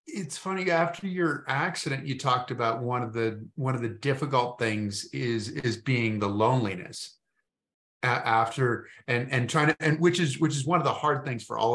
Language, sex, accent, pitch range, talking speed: English, male, American, 115-150 Hz, 200 wpm